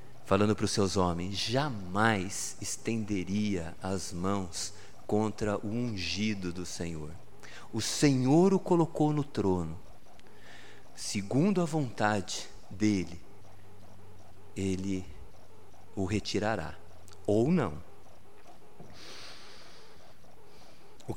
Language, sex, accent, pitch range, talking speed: Portuguese, male, Brazilian, 95-130 Hz, 85 wpm